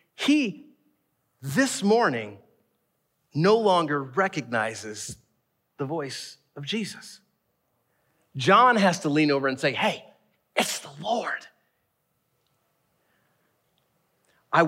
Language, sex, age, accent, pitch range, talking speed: English, male, 40-59, American, 125-180 Hz, 90 wpm